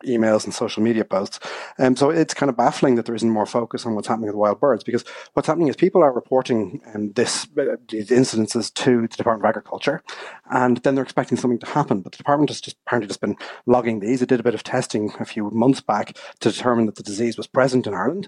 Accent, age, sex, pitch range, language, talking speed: Irish, 30-49, male, 110-125 Hz, English, 235 wpm